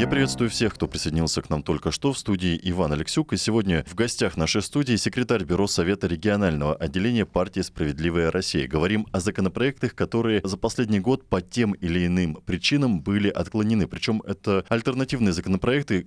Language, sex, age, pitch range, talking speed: Russian, male, 20-39, 85-115 Hz, 170 wpm